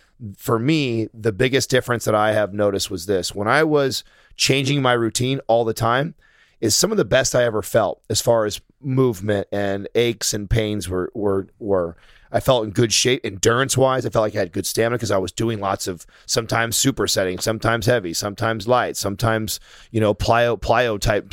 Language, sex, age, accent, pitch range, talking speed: English, male, 30-49, American, 105-130 Hz, 205 wpm